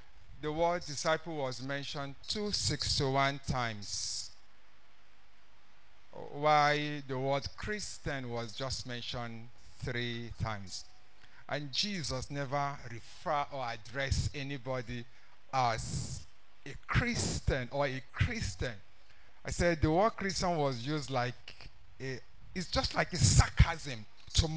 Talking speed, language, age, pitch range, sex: 105 wpm, English, 50-69, 120-180 Hz, male